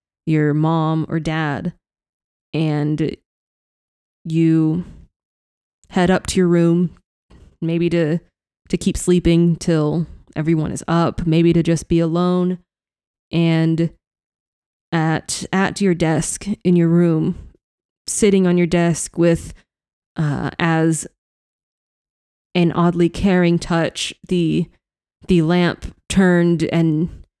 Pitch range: 160-175 Hz